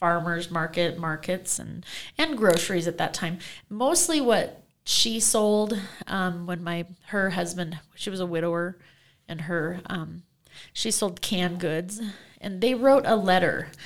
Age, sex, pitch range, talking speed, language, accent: 30-49, female, 160-195 Hz, 145 wpm, English, American